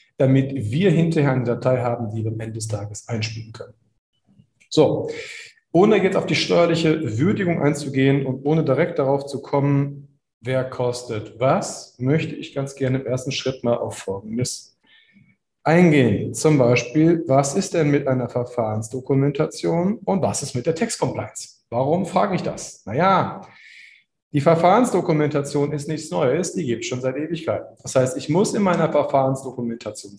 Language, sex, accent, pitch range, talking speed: German, male, German, 120-160 Hz, 160 wpm